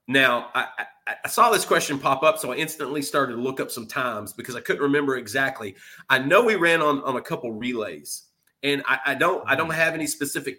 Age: 30-49